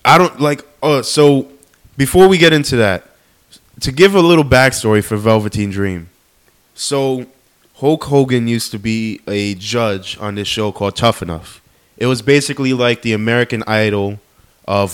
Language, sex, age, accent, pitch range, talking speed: English, male, 20-39, American, 105-145 Hz, 160 wpm